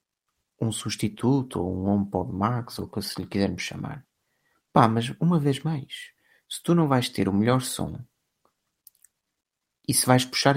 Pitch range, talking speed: 105-140 Hz, 170 wpm